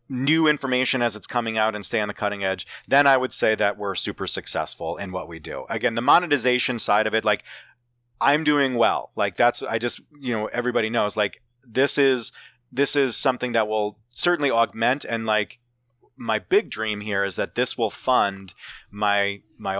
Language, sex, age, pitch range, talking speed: English, male, 30-49, 100-120 Hz, 195 wpm